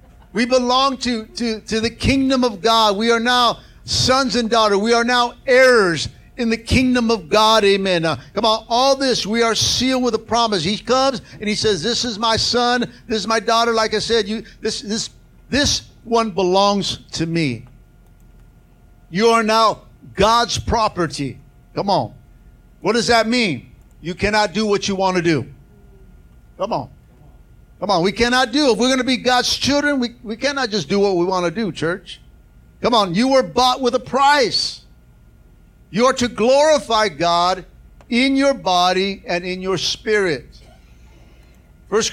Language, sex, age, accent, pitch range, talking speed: English, male, 50-69, American, 190-245 Hz, 180 wpm